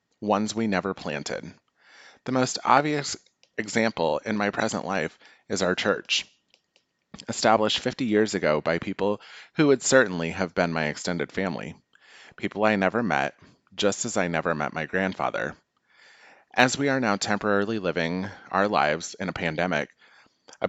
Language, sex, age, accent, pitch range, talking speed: English, male, 30-49, American, 85-110 Hz, 150 wpm